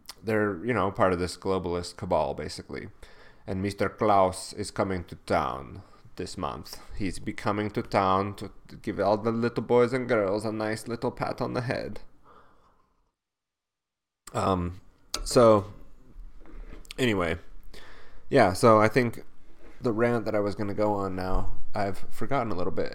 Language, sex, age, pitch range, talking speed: English, male, 30-49, 95-110 Hz, 160 wpm